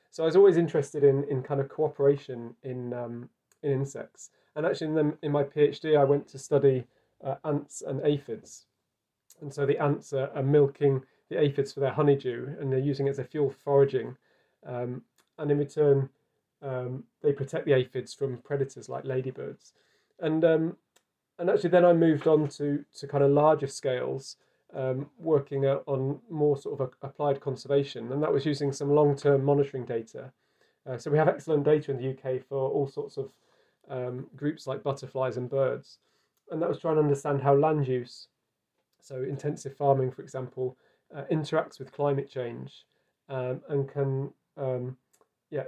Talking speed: 175 wpm